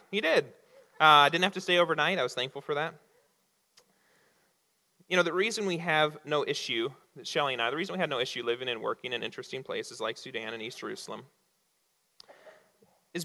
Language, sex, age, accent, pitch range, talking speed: English, male, 30-49, American, 165-250 Hz, 195 wpm